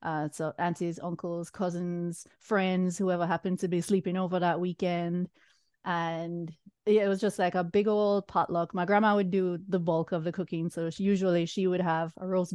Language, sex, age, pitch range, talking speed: English, female, 30-49, 170-200 Hz, 190 wpm